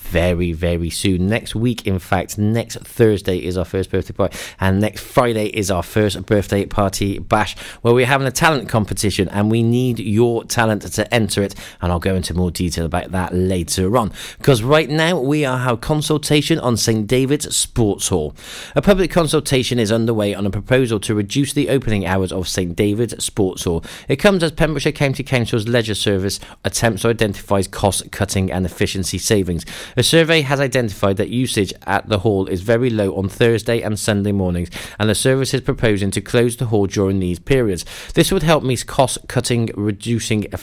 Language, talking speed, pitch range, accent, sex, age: English, 190 wpm, 95-125 Hz, British, male, 30-49